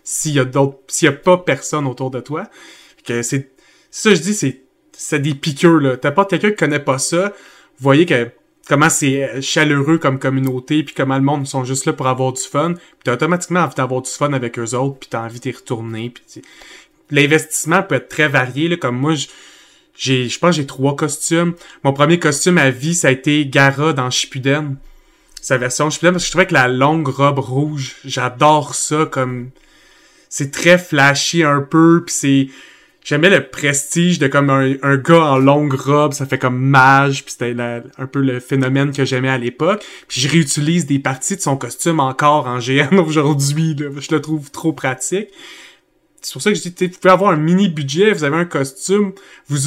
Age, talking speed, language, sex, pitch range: 30-49, 205 wpm, French, male, 135-165 Hz